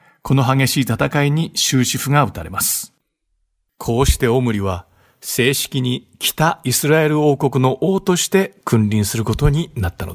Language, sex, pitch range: Japanese, male, 115-155 Hz